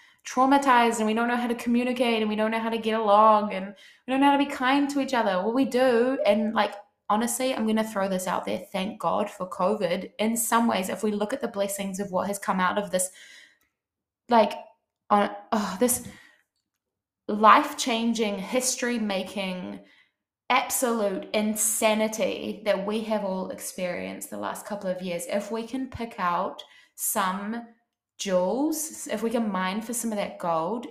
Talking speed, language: 180 wpm, English